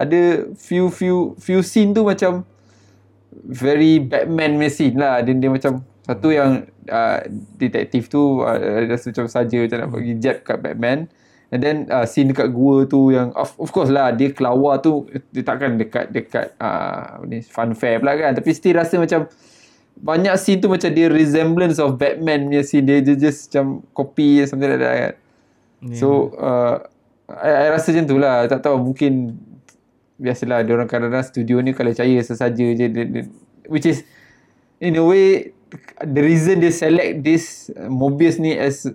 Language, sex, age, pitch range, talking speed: Malay, male, 20-39, 125-160 Hz, 175 wpm